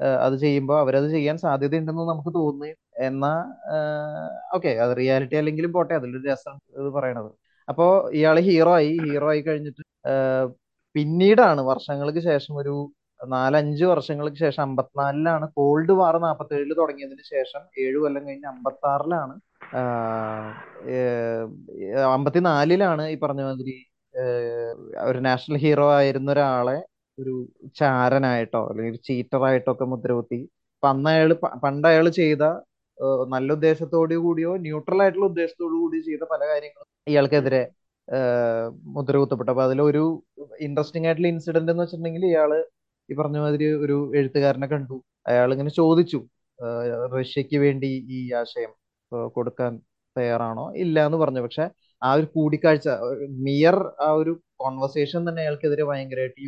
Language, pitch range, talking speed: Malayalam, 130-160 Hz, 115 wpm